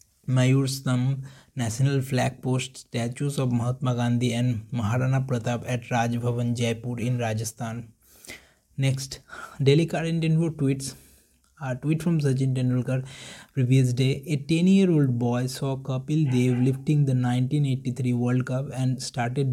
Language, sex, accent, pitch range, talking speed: English, male, Indian, 125-135 Hz, 130 wpm